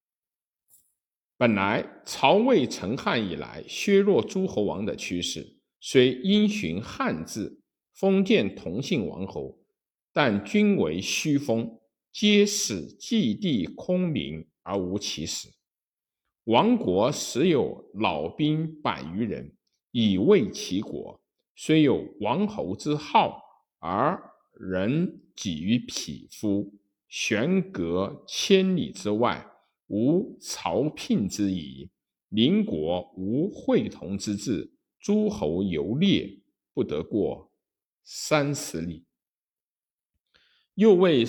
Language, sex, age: Chinese, male, 50-69